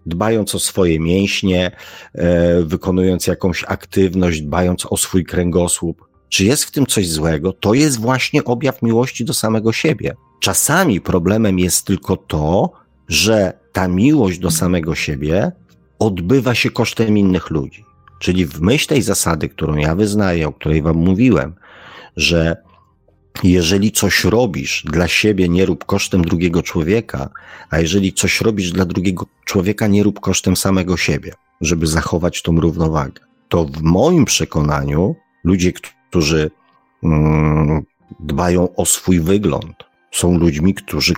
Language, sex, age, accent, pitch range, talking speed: Polish, male, 50-69, native, 80-100 Hz, 135 wpm